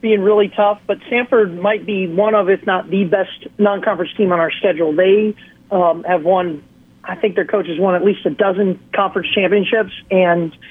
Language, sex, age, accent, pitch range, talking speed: English, male, 40-59, American, 180-210 Hz, 195 wpm